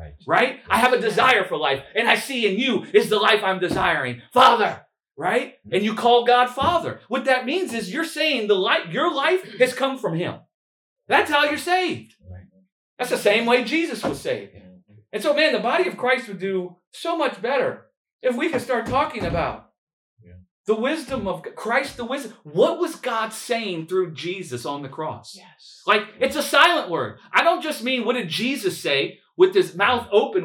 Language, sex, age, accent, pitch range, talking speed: English, male, 40-59, American, 200-305 Hz, 195 wpm